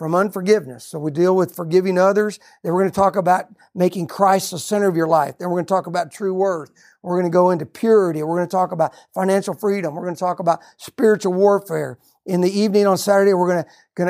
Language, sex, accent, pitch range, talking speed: English, male, American, 165-195 Hz, 245 wpm